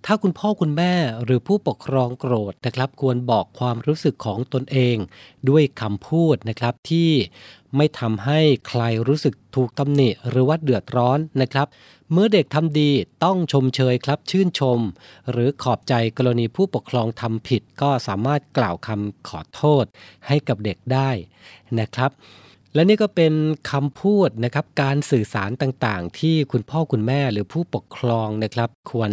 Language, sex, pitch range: Thai, male, 110-145 Hz